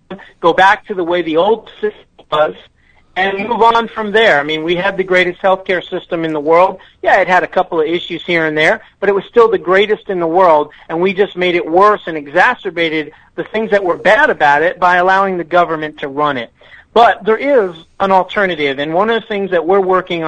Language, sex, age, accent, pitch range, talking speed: English, male, 40-59, American, 155-190 Hz, 235 wpm